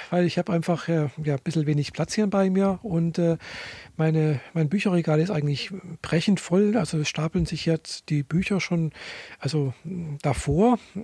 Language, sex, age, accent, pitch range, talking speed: German, male, 40-59, German, 155-185 Hz, 175 wpm